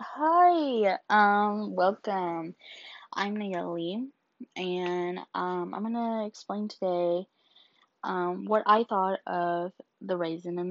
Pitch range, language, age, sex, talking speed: 170-210 Hz, English, 20-39, female, 105 wpm